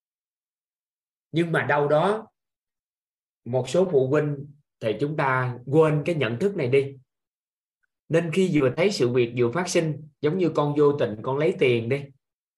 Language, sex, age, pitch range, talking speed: Vietnamese, male, 20-39, 120-160 Hz, 165 wpm